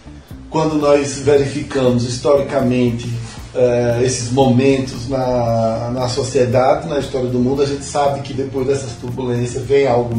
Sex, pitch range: male, 125-150 Hz